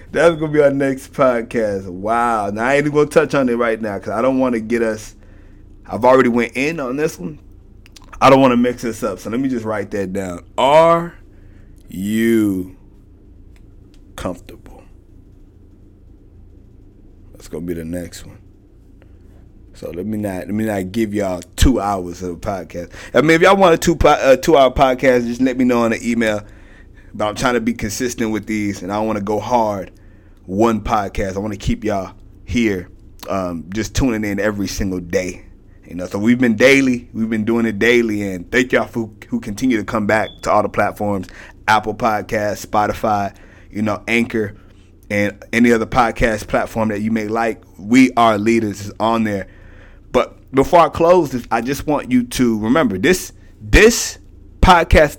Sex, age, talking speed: male, 30-49, 190 wpm